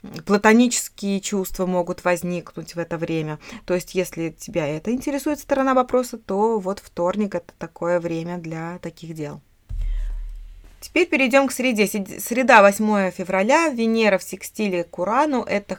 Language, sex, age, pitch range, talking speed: Russian, female, 20-39, 170-220 Hz, 140 wpm